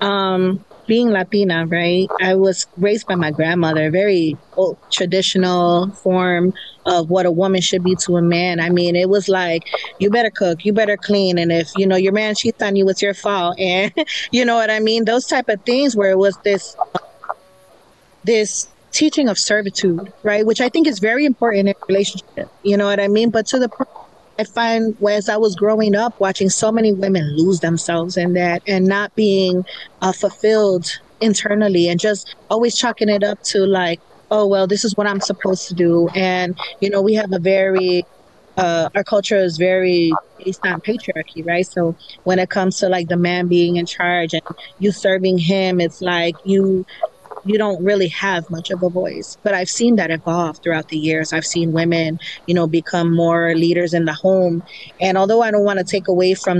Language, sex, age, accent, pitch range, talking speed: English, female, 30-49, American, 175-205 Hz, 200 wpm